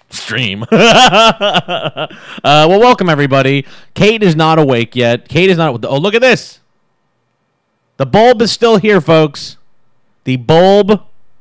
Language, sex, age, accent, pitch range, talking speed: English, male, 30-49, American, 115-170 Hz, 130 wpm